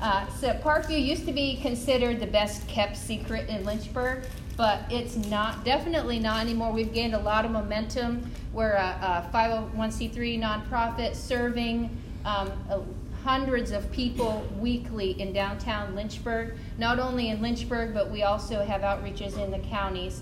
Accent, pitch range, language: American, 210-255 Hz, English